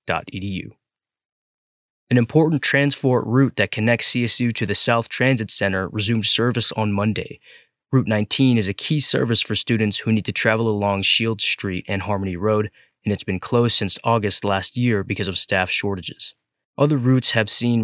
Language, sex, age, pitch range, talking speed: English, male, 20-39, 100-120 Hz, 170 wpm